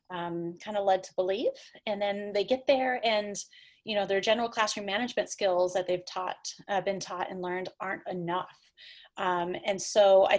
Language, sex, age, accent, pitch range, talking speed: English, female, 30-49, American, 180-225 Hz, 185 wpm